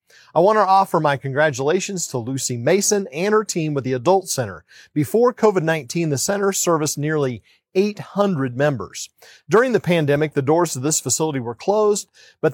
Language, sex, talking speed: English, male, 165 wpm